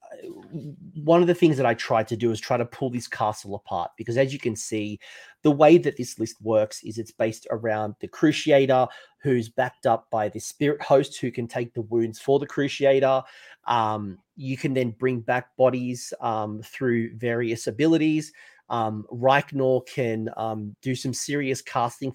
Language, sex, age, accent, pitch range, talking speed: English, male, 30-49, Australian, 115-140 Hz, 180 wpm